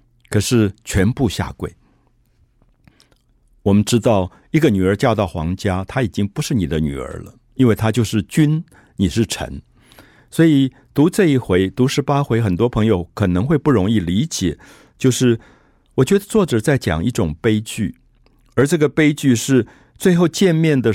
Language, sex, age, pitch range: Chinese, male, 50-69, 95-130 Hz